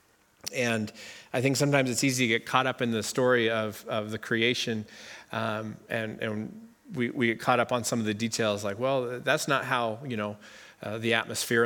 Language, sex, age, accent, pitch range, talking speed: English, male, 40-59, American, 115-135 Hz, 205 wpm